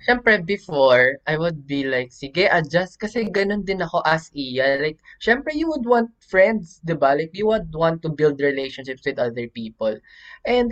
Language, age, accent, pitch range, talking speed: Filipino, 20-39, native, 135-200 Hz, 185 wpm